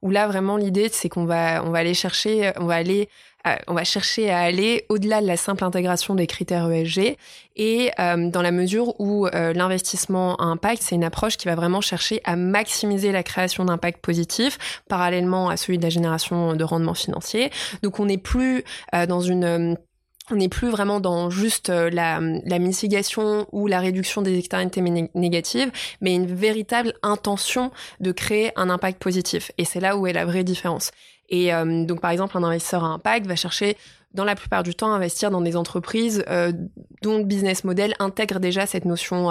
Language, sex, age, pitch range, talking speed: French, female, 20-39, 175-210 Hz, 200 wpm